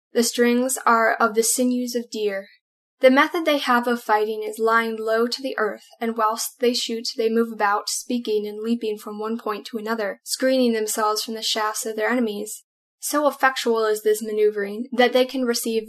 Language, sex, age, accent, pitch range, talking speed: English, female, 10-29, American, 215-245 Hz, 195 wpm